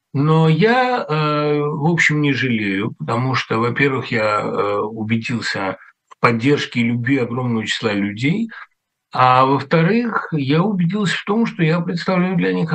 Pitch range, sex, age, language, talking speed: 120-155 Hz, male, 60-79, Russian, 135 wpm